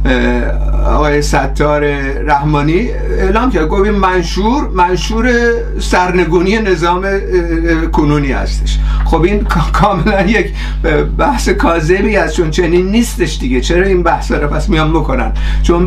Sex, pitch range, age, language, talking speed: male, 160-205 Hz, 50-69, Persian, 115 wpm